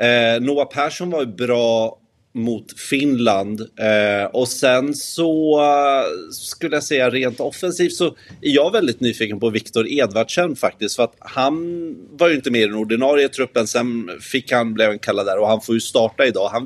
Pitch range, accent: 105-130 Hz, native